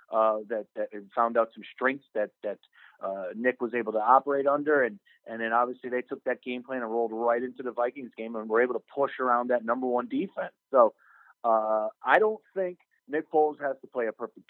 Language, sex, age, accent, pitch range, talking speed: English, male, 30-49, American, 120-140 Hz, 225 wpm